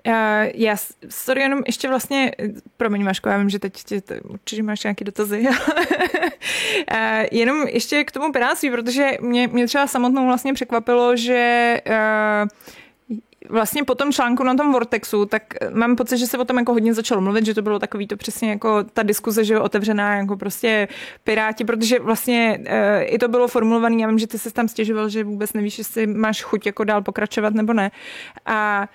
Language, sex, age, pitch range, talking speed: Czech, female, 20-39, 215-255 Hz, 175 wpm